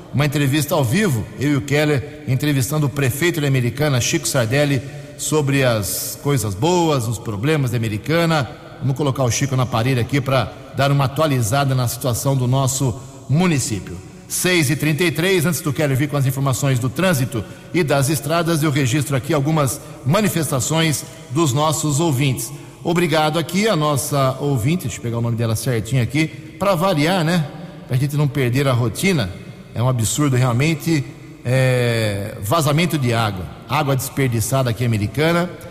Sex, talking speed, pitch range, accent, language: male, 160 wpm, 130-155 Hz, Brazilian, Portuguese